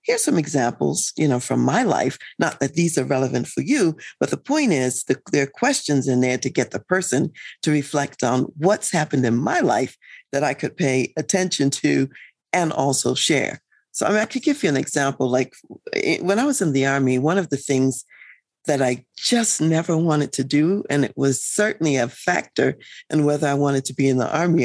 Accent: American